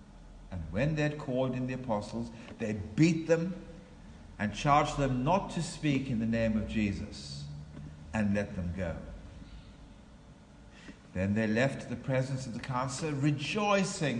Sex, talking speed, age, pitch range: male, 150 wpm, 60-79, 95-135 Hz